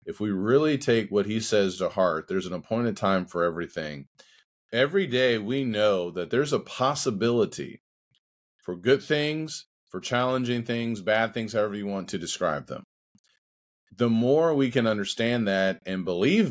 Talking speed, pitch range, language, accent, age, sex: 165 wpm, 100-135 Hz, English, American, 30-49, male